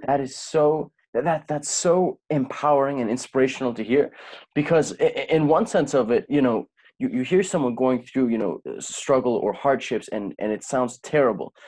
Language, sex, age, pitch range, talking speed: English, male, 20-39, 125-155 Hz, 180 wpm